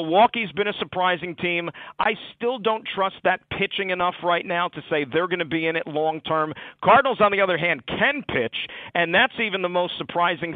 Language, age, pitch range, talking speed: English, 50-69, 150-185 Hz, 205 wpm